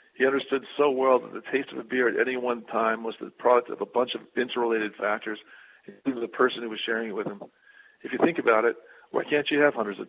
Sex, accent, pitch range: male, American, 110-125 Hz